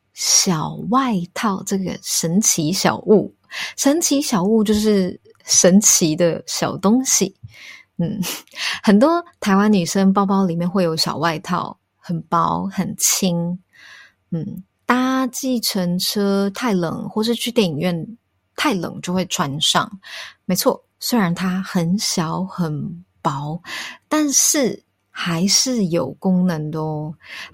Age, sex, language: 20-39, female, English